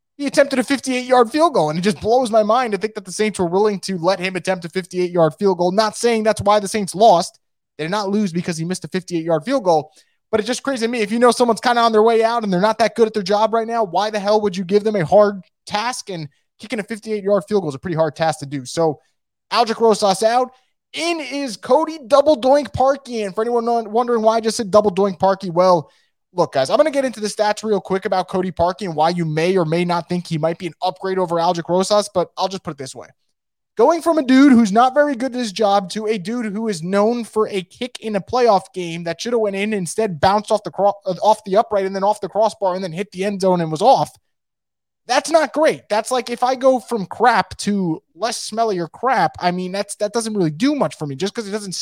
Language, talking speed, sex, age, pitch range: English, 270 wpm, male, 20-39, 185-230 Hz